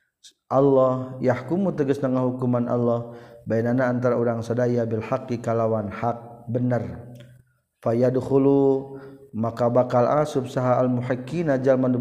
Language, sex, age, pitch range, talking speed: Indonesian, male, 40-59, 115-130 Hz, 100 wpm